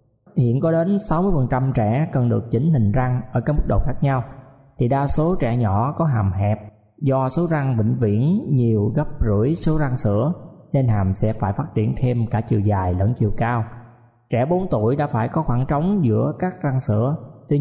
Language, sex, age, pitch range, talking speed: Vietnamese, male, 20-39, 110-150 Hz, 210 wpm